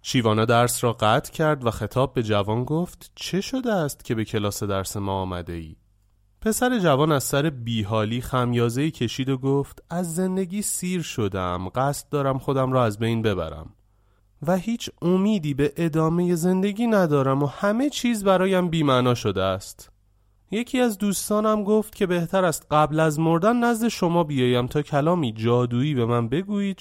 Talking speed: 165 wpm